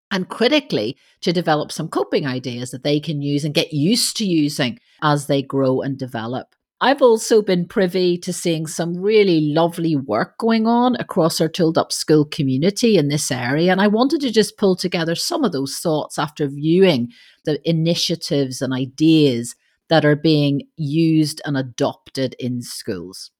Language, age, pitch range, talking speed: English, 40-59, 150-190 Hz, 170 wpm